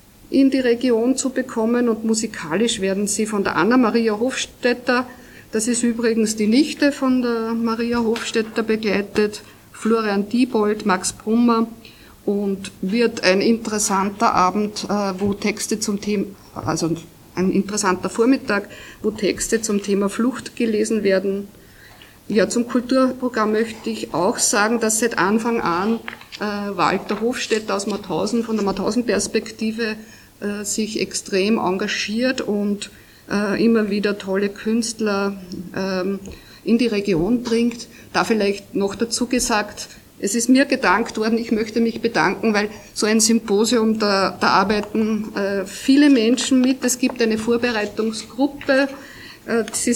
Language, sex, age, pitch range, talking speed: German, female, 50-69, 200-235 Hz, 125 wpm